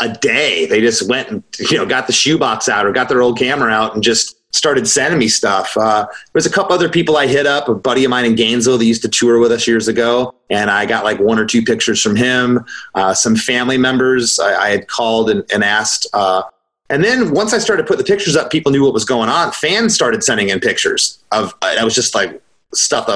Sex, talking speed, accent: male, 255 wpm, American